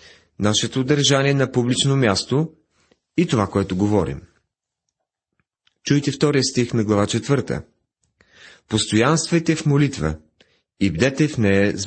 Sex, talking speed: male, 115 wpm